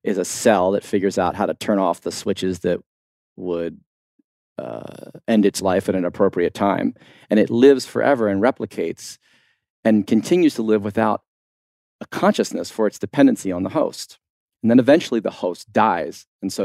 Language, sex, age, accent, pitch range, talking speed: English, male, 40-59, American, 100-115 Hz, 175 wpm